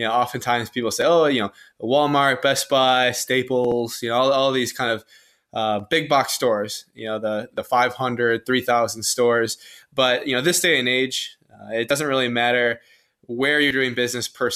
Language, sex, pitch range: English, male, 115-130 Hz